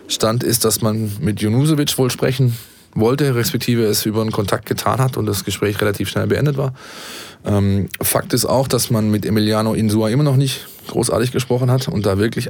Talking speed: 195 wpm